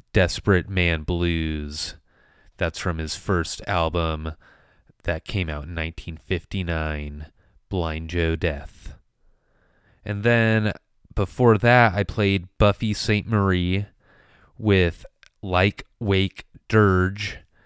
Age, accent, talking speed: 30-49, American, 100 wpm